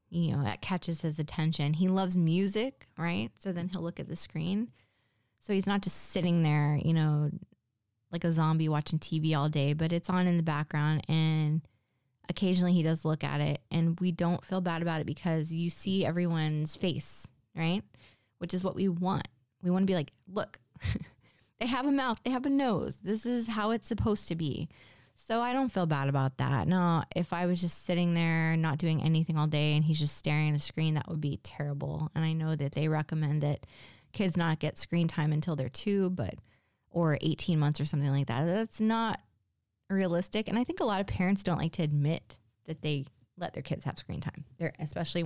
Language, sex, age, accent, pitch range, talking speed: English, female, 20-39, American, 145-180 Hz, 215 wpm